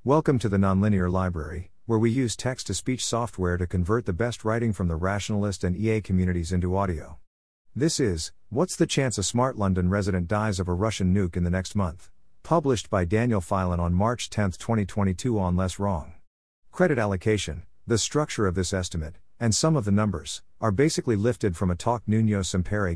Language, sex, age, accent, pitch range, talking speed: English, male, 50-69, American, 90-115 Hz, 190 wpm